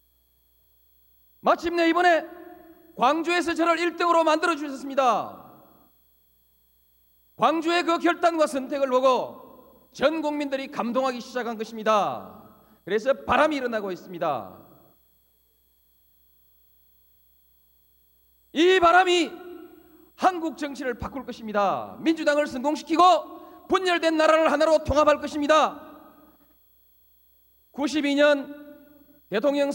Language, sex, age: Korean, male, 40-59